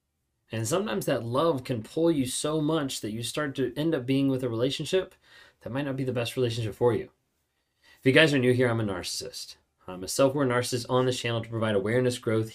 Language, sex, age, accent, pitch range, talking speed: English, male, 20-39, American, 120-140 Hz, 230 wpm